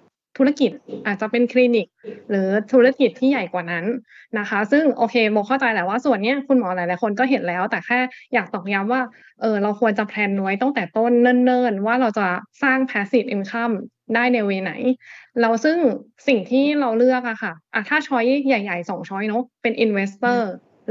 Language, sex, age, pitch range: Thai, female, 20-39, 205-250 Hz